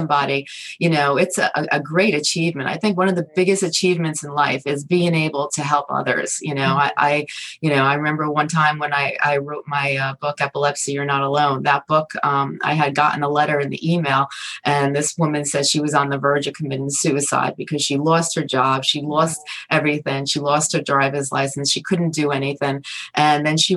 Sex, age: female, 30-49